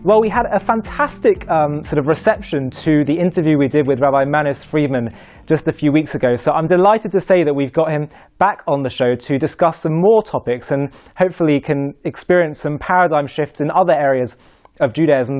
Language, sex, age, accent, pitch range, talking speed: English, male, 20-39, British, 140-180 Hz, 205 wpm